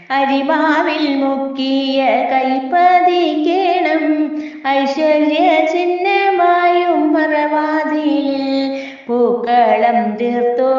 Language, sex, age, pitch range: Malayalam, female, 20-39, 220-310 Hz